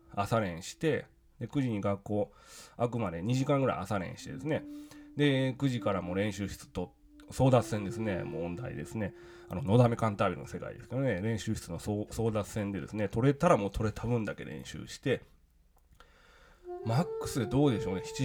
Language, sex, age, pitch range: Japanese, male, 20-39, 105-155 Hz